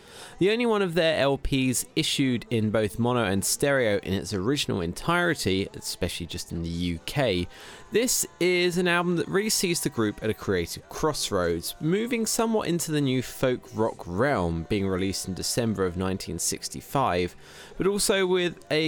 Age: 20-39